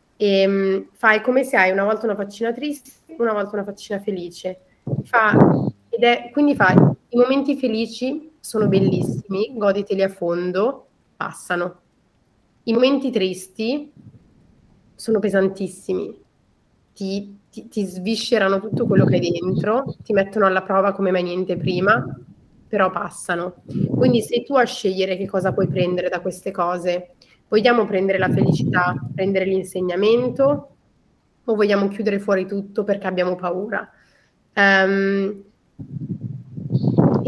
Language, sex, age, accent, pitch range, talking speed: Italian, female, 30-49, native, 185-220 Hz, 130 wpm